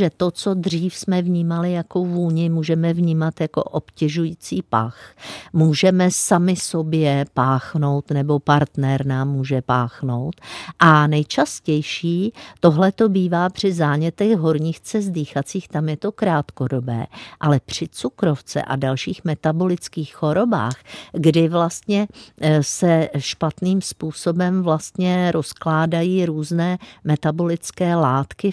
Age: 50-69